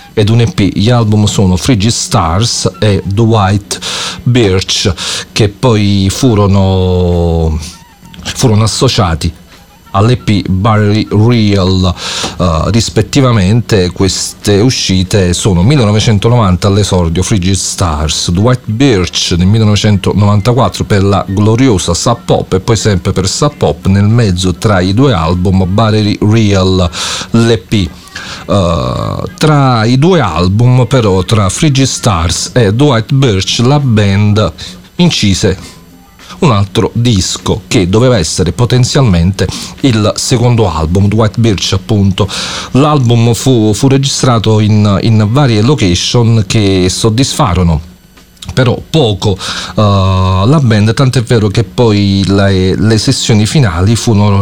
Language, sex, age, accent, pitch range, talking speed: English, male, 40-59, Italian, 95-115 Hz, 115 wpm